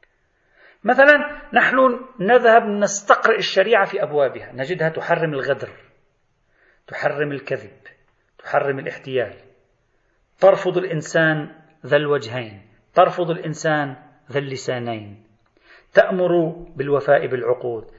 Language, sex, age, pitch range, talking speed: Arabic, male, 40-59, 145-200 Hz, 85 wpm